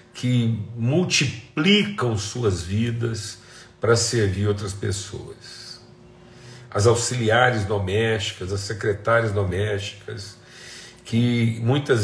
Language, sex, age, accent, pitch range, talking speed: Portuguese, male, 50-69, Brazilian, 105-130 Hz, 80 wpm